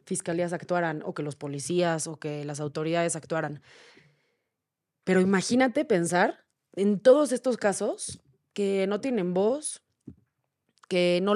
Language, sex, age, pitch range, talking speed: Spanish, female, 20-39, 170-205 Hz, 125 wpm